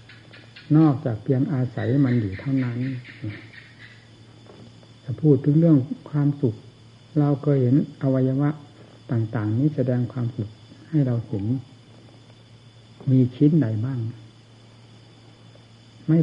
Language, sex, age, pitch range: Thai, male, 60-79, 115-135 Hz